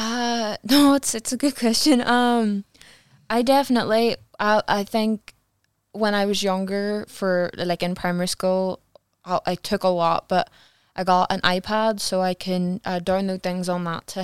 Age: 20-39